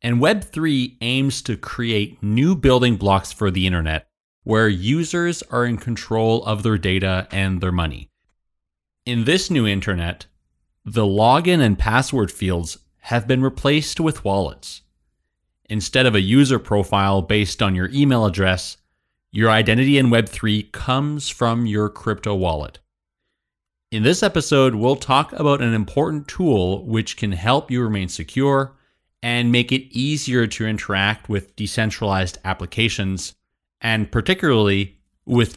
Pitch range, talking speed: 95-130 Hz, 140 wpm